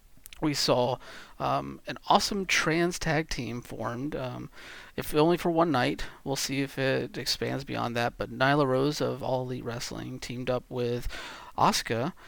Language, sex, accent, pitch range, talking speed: English, male, American, 120-150 Hz, 160 wpm